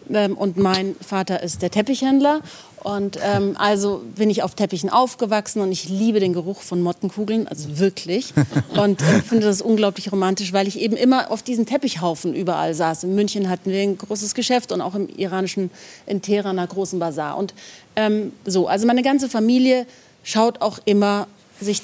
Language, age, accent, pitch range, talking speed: German, 40-59, German, 185-225 Hz, 180 wpm